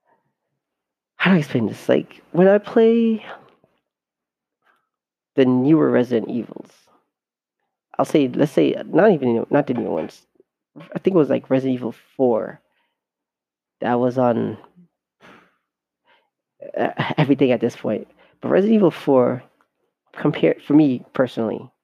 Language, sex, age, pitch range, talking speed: English, male, 40-59, 125-145 Hz, 125 wpm